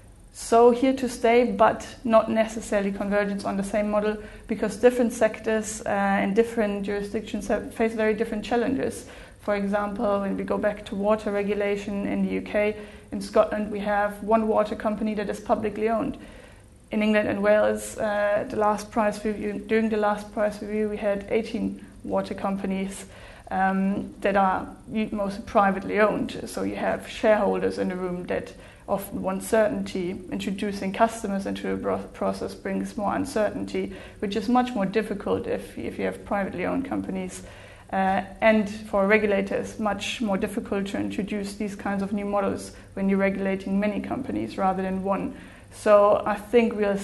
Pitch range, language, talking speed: 190-215 Hz, English, 165 wpm